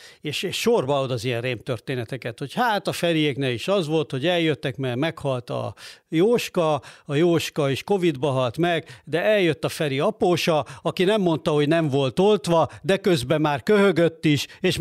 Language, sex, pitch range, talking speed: Hungarian, male, 135-185 Hz, 180 wpm